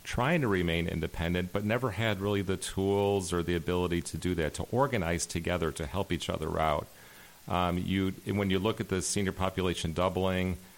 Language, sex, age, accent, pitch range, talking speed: English, male, 40-59, American, 85-95 Hz, 190 wpm